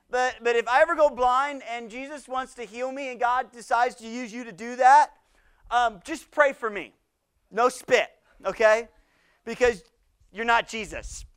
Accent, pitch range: American, 230-295 Hz